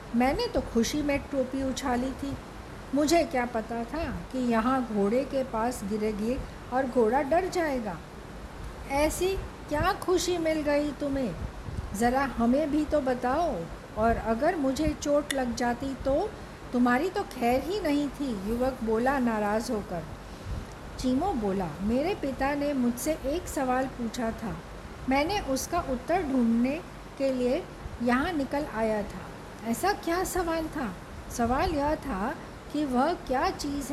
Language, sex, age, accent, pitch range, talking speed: Hindi, female, 50-69, native, 230-300 Hz, 140 wpm